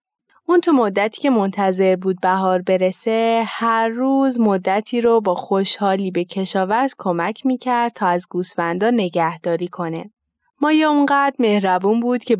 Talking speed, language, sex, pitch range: 135 wpm, Persian, female, 185-245 Hz